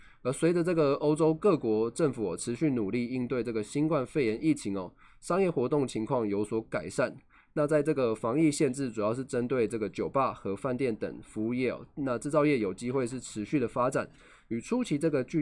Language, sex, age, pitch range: Chinese, male, 20-39, 110-150 Hz